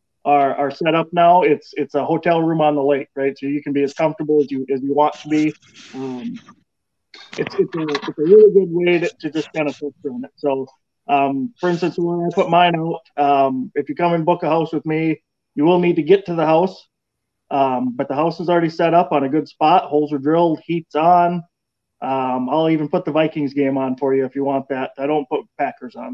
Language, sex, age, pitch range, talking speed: English, male, 20-39, 140-170 Hz, 245 wpm